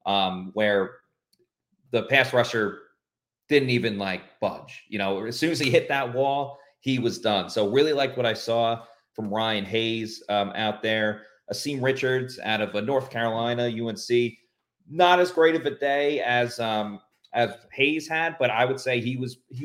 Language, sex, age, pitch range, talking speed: English, male, 30-49, 105-130 Hz, 180 wpm